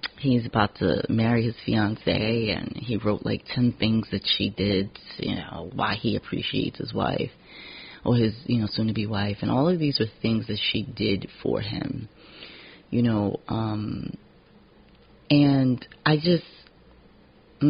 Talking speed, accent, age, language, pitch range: 155 wpm, American, 30-49, English, 105-125 Hz